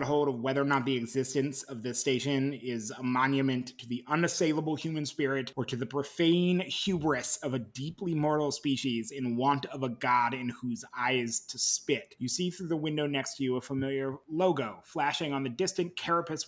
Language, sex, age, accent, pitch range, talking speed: English, male, 30-49, American, 125-170 Hz, 195 wpm